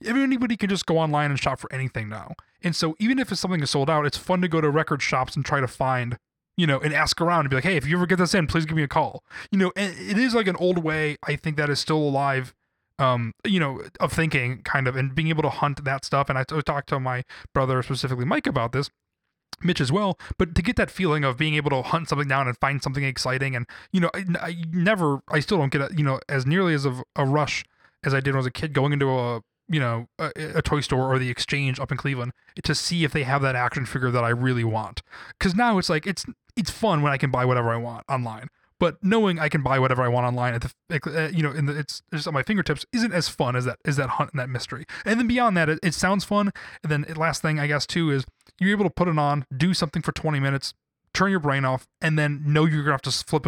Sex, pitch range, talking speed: male, 135-170 Hz, 275 wpm